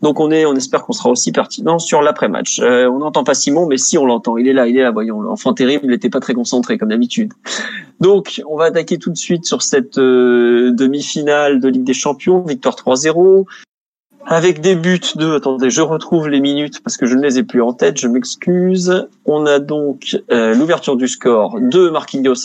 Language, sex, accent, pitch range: French, male, French, 130-170 Hz